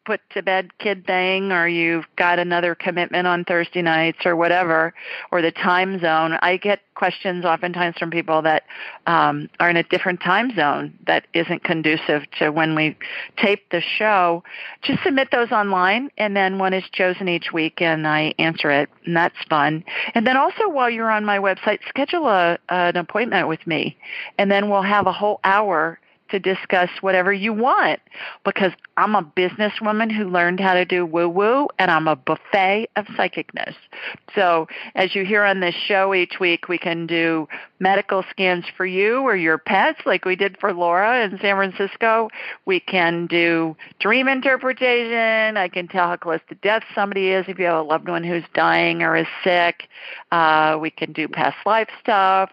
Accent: American